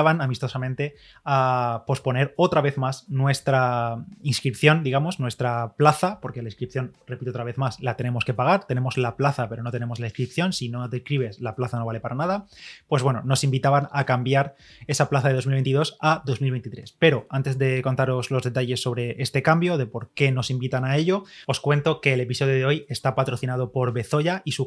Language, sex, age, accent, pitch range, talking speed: Spanish, male, 20-39, Spanish, 125-145 Hz, 195 wpm